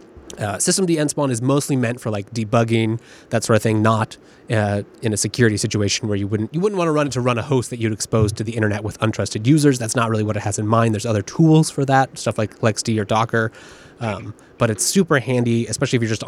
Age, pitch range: 20-39, 110-140 Hz